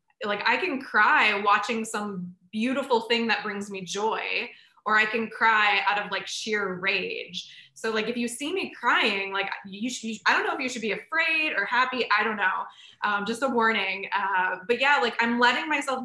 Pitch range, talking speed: 195-235 Hz, 210 wpm